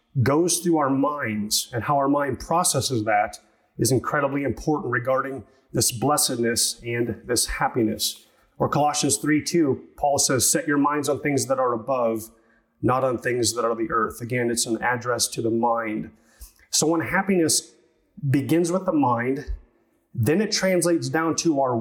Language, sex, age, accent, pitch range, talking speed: English, male, 30-49, American, 120-155 Hz, 165 wpm